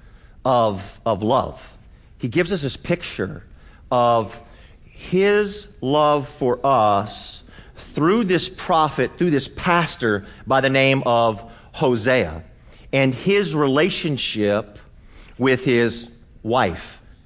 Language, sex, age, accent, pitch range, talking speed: English, male, 40-59, American, 110-150 Hz, 105 wpm